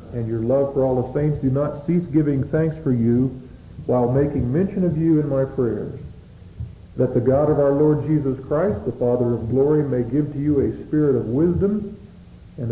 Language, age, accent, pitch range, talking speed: English, 50-69, American, 115-145 Hz, 205 wpm